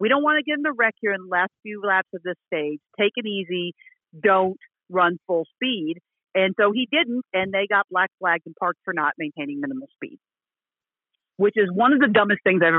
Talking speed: 225 wpm